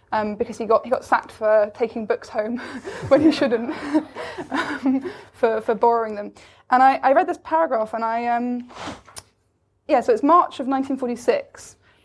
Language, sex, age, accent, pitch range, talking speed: English, female, 20-39, British, 220-275 Hz, 170 wpm